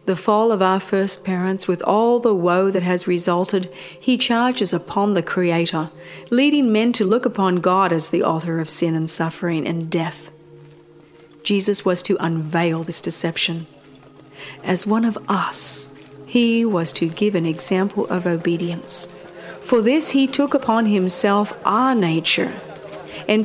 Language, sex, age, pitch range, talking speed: English, female, 40-59, 170-220 Hz, 155 wpm